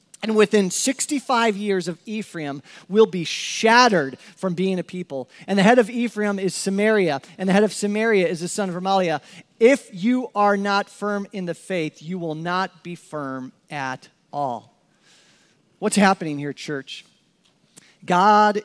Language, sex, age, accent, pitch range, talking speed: English, male, 40-59, American, 165-210 Hz, 160 wpm